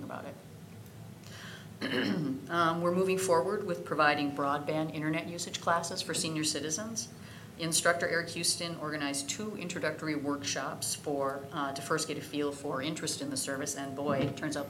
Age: 40-59